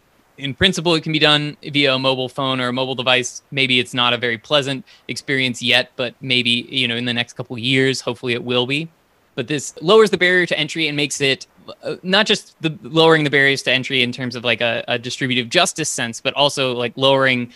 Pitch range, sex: 120-150 Hz, male